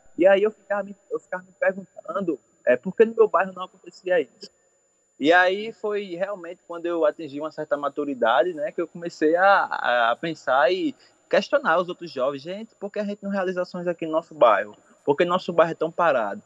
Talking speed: 205 wpm